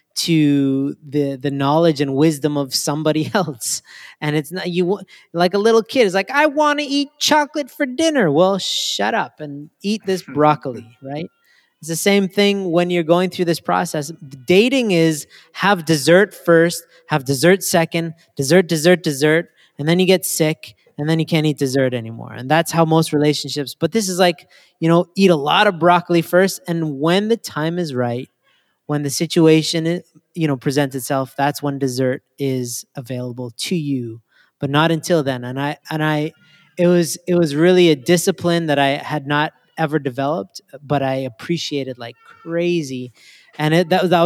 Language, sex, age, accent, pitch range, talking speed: English, male, 20-39, American, 145-175 Hz, 180 wpm